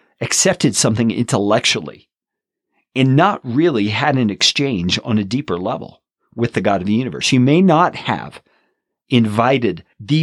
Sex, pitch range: male, 105-150 Hz